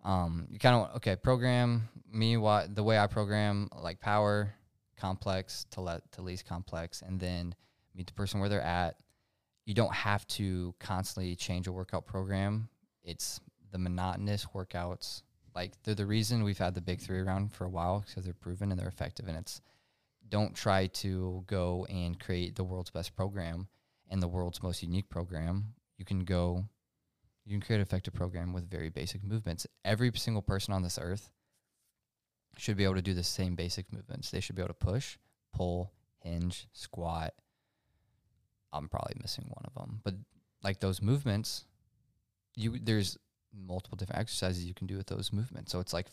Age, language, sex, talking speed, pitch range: 20-39, English, male, 180 wpm, 90-105 Hz